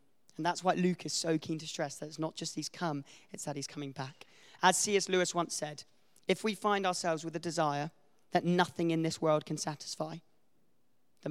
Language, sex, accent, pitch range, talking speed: English, male, British, 150-180 Hz, 210 wpm